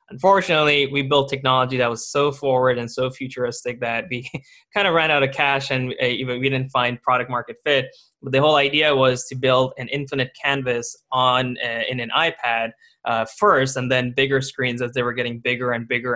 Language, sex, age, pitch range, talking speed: English, male, 20-39, 120-140 Hz, 200 wpm